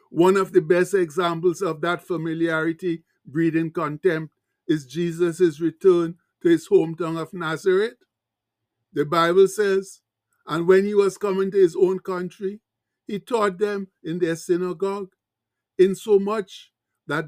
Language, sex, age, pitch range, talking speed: English, male, 60-79, 165-195 Hz, 130 wpm